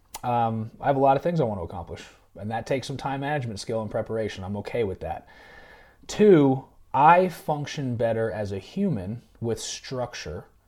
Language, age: English, 30-49